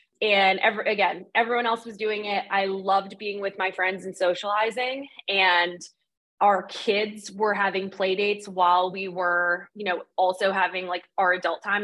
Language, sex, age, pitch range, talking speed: English, female, 20-39, 190-235 Hz, 165 wpm